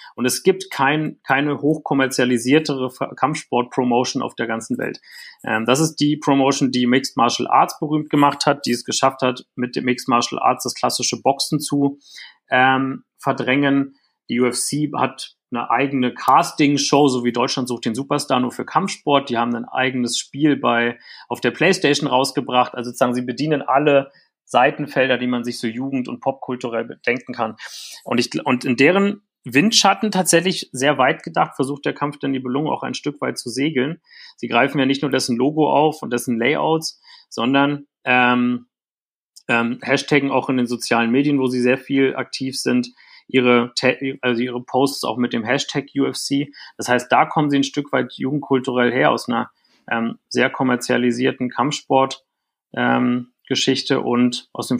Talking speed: 165 wpm